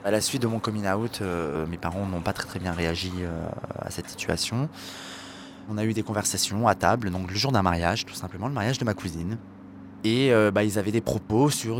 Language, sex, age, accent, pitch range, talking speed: French, male, 20-39, French, 90-115 Hz, 240 wpm